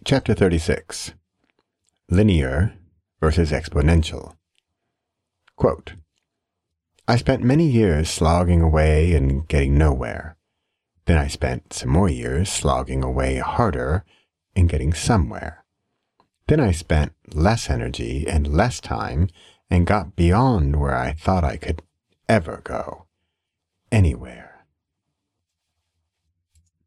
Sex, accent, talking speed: male, American, 105 wpm